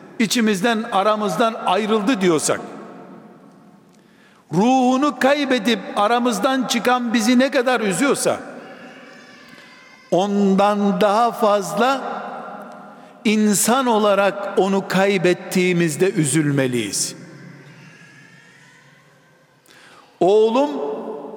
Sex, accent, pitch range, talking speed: male, native, 200-255 Hz, 60 wpm